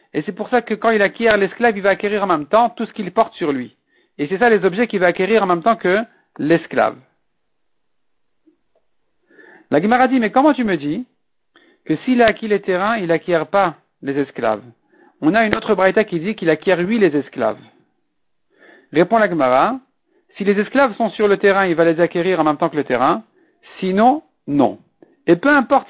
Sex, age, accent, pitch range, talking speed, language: male, 50-69, French, 185-240 Hz, 215 wpm, French